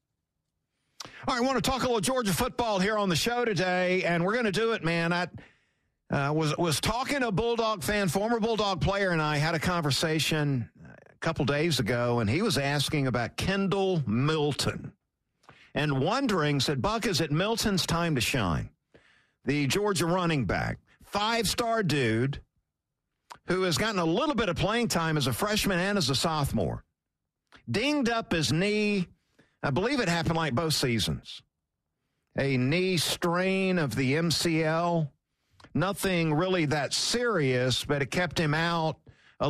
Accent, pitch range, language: American, 140-195 Hz, English